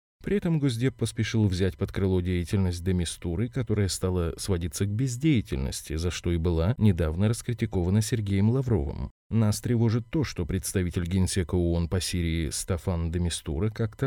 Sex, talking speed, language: male, 145 wpm, Russian